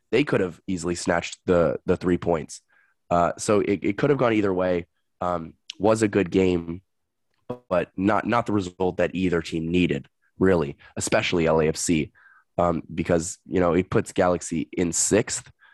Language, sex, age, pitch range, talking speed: English, male, 20-39, 85-100 Hz, 170 wpm